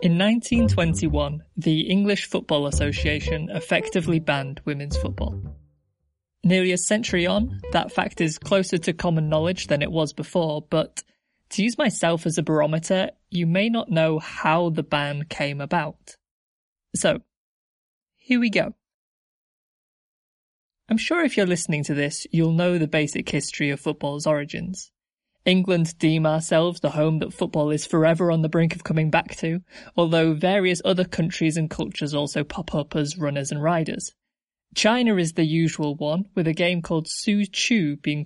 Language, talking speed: English, 160 wpm